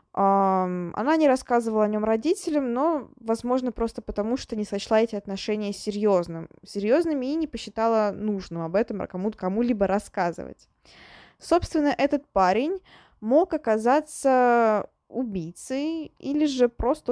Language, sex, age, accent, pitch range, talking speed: Russian, female, 20-39, native, 205-255 Hz, 125 wpm